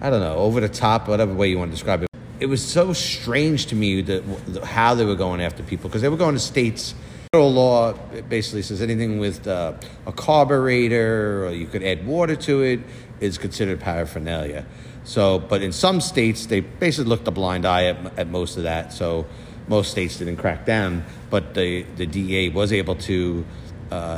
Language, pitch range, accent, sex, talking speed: English, 90-115 Hz, American, male, 200 wpm